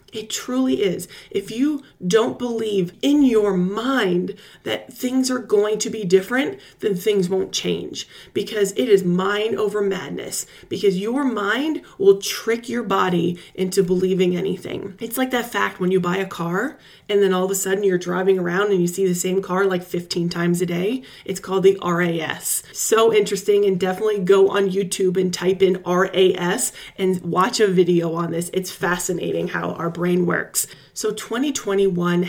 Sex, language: female, English